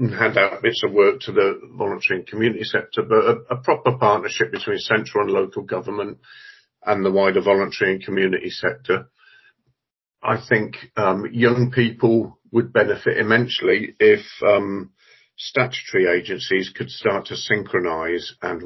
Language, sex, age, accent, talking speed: English, male, 50-69, British, 150 wpm